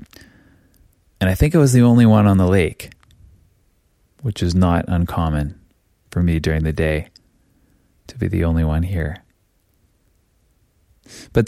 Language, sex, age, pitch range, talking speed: English, male, 20-39, 85-110 Hz, 140 wpm